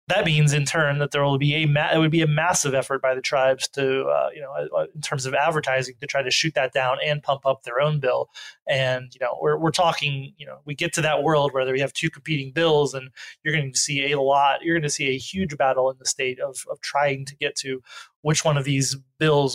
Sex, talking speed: male, 265 wpm